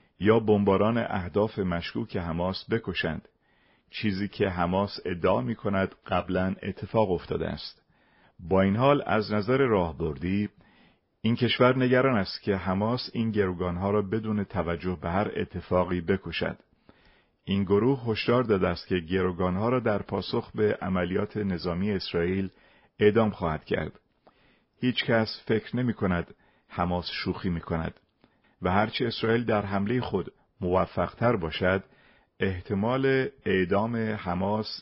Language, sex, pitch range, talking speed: Persian, male, 90-110 Hz, 130 wpm